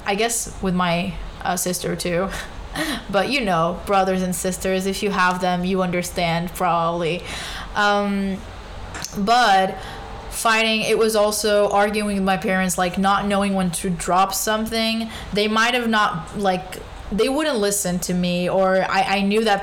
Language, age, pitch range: English, 20-39, 185-215 Hz